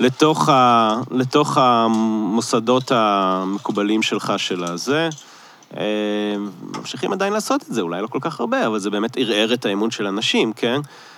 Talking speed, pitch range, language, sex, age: 145 wpm, 100-125 Hz, Hebrew, male, 30-49